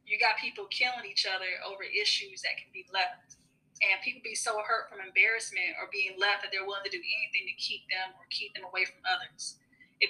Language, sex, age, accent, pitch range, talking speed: English, female, 20-39, American, 200-270 Hz, 225 wpm